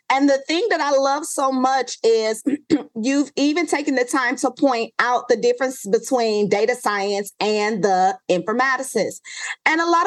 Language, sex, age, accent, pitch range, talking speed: English, female, 30-49, American, 220-290 Hz, 165 wpm